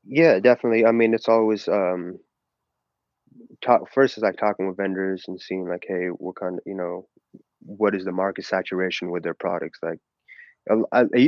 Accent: American